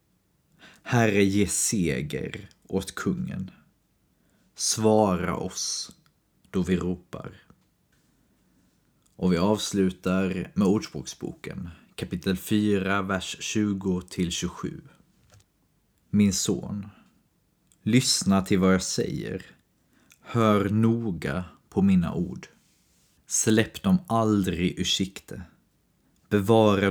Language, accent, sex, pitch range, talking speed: Swedish, native, male, 90-105 Hz, 85 wpm